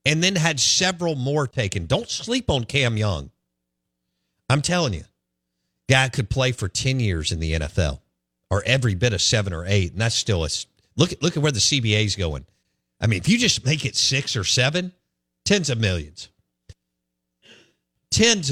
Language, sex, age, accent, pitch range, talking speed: English, male, 50-69, American, 90-135 Hz, 180 wpm